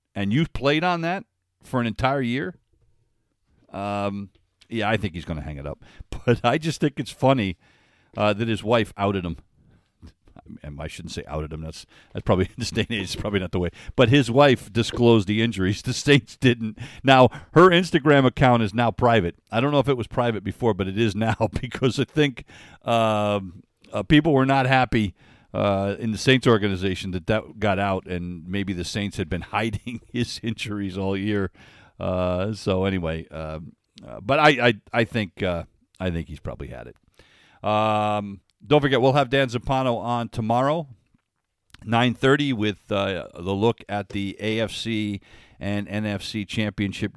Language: English